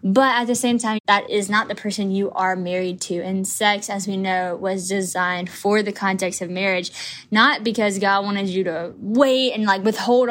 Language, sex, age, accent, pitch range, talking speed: English, female, 10-29, American, 190-235 Hz, 210 wpm